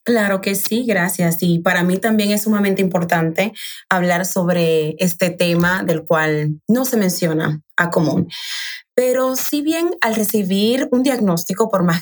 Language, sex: Spanish, female